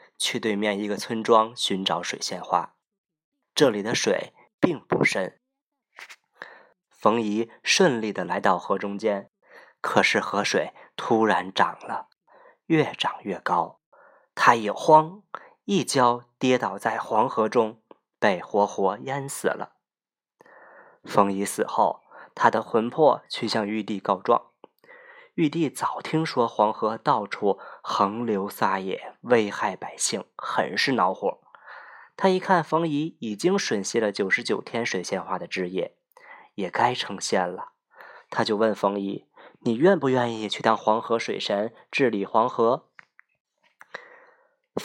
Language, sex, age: Chinese, male, 20-39